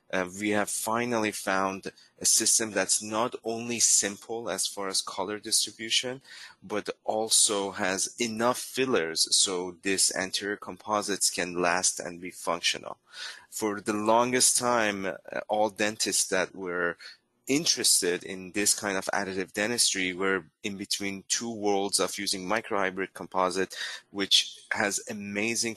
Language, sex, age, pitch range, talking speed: English, male, 30-49, 95-110 Hz, 135 wpm